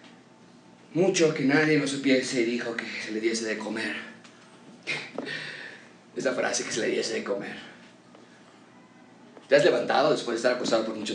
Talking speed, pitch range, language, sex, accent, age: 160 wpm, 120-185 Hz, Spanish, male, Mexican, 30-49